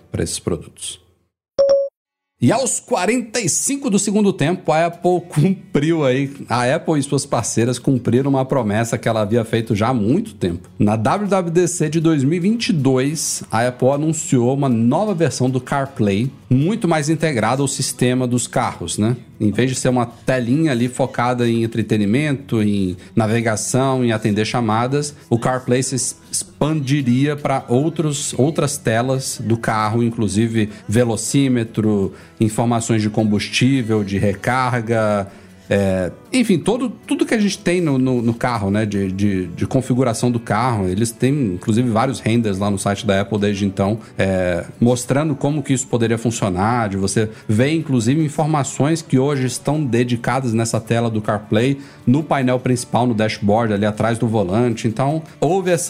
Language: Portuguese